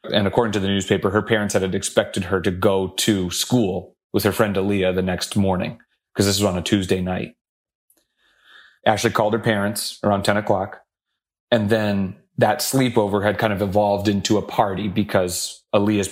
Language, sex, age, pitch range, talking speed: English, male, 30-49, 100-115 Hz, 180 wpm